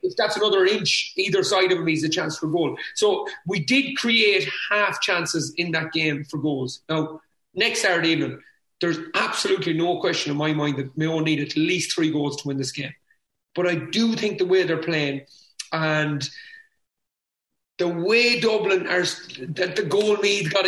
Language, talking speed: English, 185 wpm